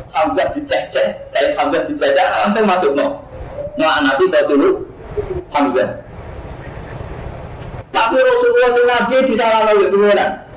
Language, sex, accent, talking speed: Indonesian, male, native, 120 wpm